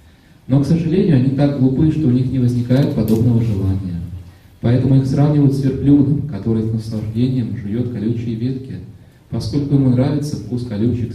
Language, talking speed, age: English, 155 wpm, 30-49